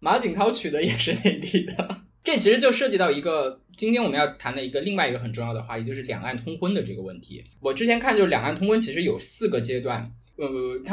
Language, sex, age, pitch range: Chinese, male, 20-39, 115-170 Hz